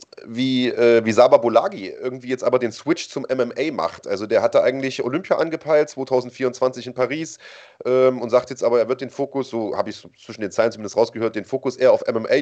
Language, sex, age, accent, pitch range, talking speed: German, male, 30-49, German, 120-135 Hz, 215 wpm